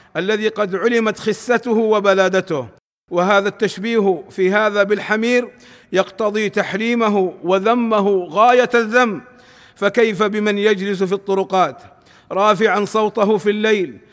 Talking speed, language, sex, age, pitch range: 100 wpm, Arabic, male, 50-69, 200-230 Hz